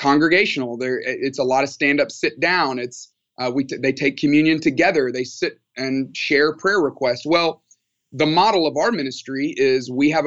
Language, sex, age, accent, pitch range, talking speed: English, male, 30-49, American, 125-150 Hz, 175 wpm